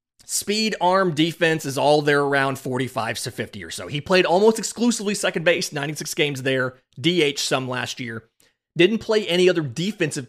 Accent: American